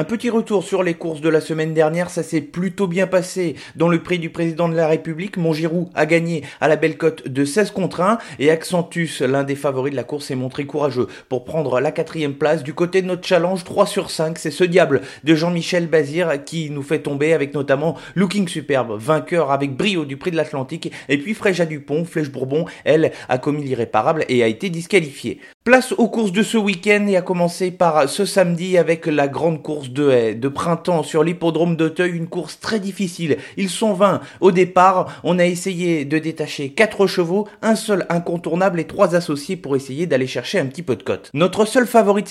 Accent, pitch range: French, 150-185 Hz